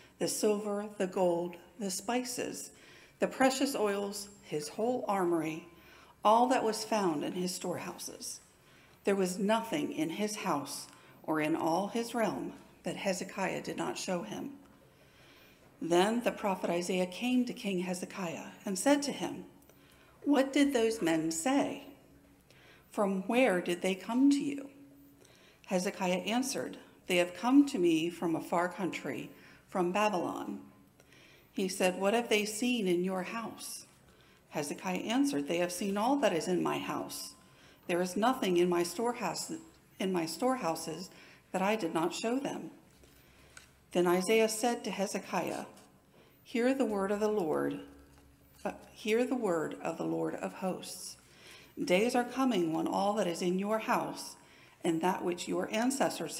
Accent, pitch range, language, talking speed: American, 180-240 Hz, English, 150 wpm